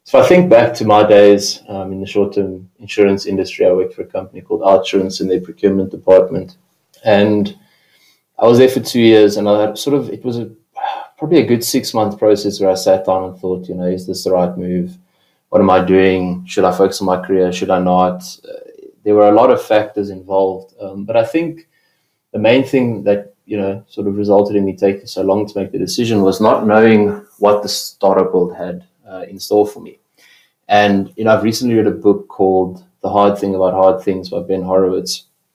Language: English